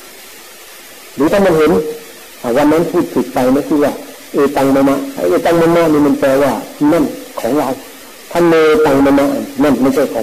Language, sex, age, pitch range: Thai, male, 50-69, 135-170 Hz